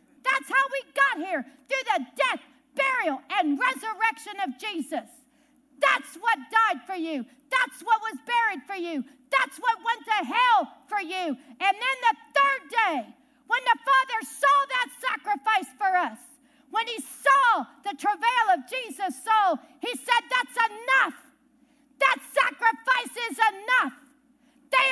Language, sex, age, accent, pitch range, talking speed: English, female, 50-69, American, 270-445 Hz, 145 wpm